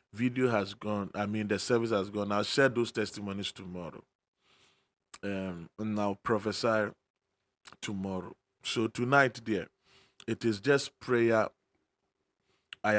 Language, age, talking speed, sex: English, 30-49, 125 wpm, male